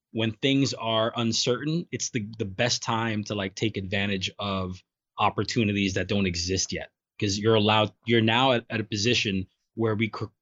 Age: 20-39